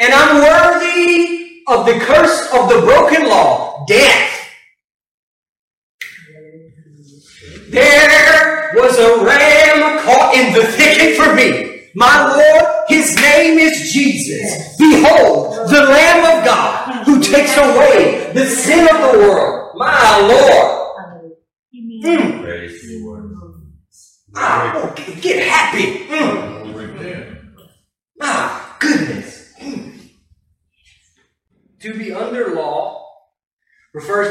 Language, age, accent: English, 40-59, American